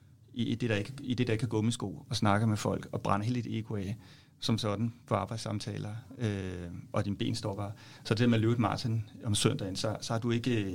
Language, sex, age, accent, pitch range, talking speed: Danish, male, 30-49, native, 115-140 Hz, 225 wpm